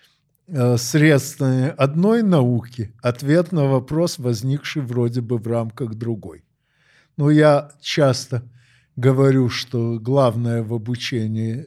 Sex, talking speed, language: male, 105 wpm, Russian